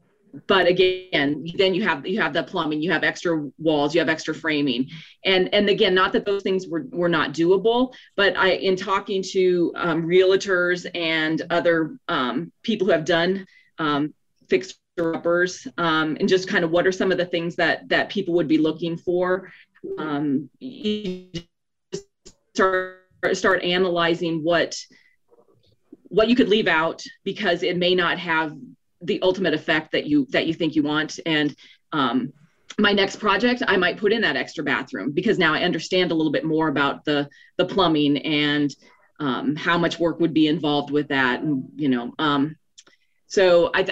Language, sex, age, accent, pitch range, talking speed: English, female, 30-49, American, 160-195 Hz, 175 wpm